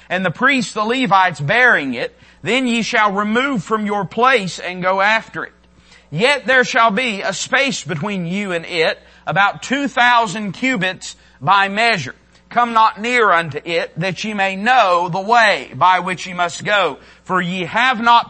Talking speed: 175 wpm